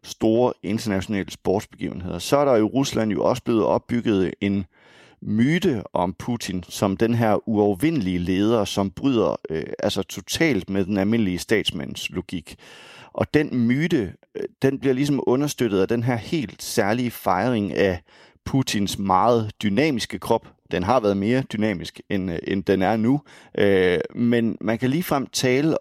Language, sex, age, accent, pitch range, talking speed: English, male, 30-49, Danish, 100-125 Hz, 160 wpm